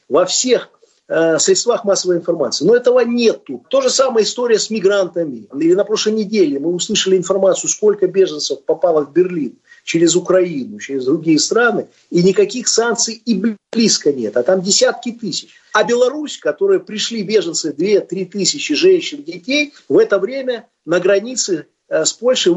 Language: Russian